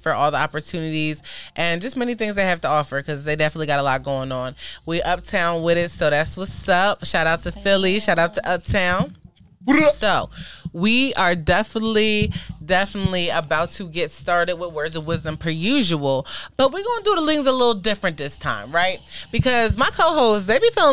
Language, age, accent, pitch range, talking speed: English, 20-39, American, 170-235 Hz, 195 wpm